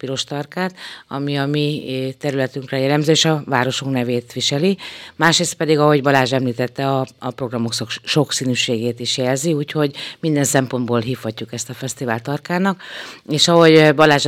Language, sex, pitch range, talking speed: Hungarian, female, 125-150 Hz, 140 wpm